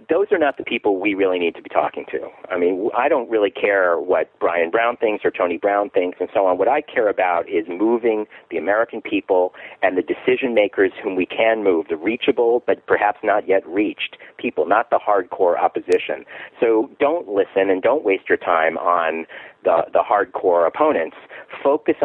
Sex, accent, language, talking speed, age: male, American, English, 195 wpm, 40-59